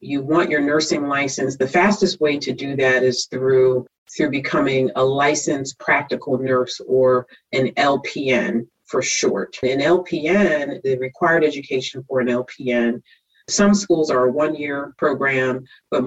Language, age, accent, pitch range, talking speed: English, 40-59, American, 125-155 Hz, 145 wpm